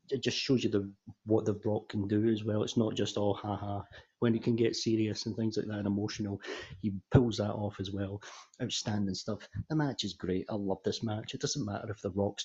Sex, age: male, 30-49